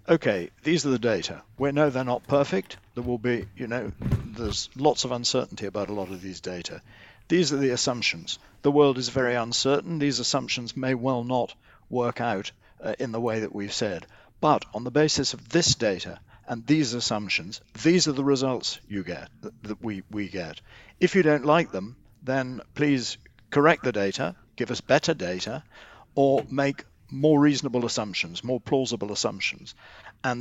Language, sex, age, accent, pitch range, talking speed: English, male, 60-79, British, 105-135 Hz, 180 wpm